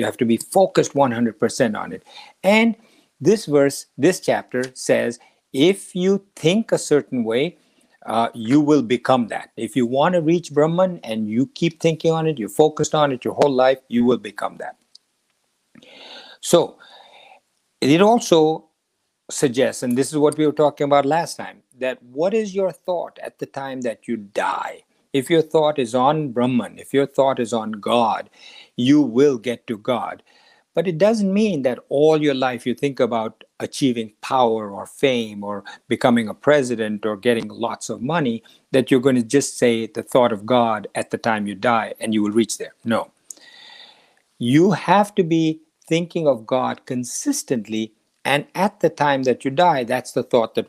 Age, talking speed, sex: 60-79, 180 wpm, male